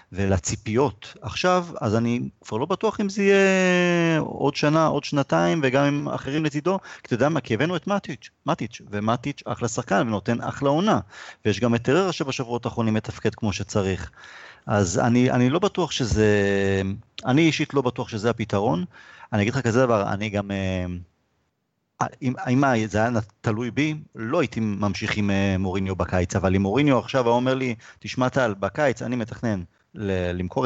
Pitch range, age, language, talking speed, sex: 105-140 Hz, 30-49, Hebrew, 155 wpm, male